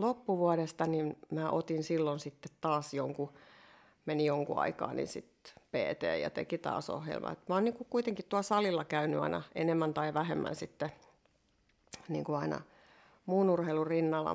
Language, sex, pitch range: Finnish, female, 155-180 Hz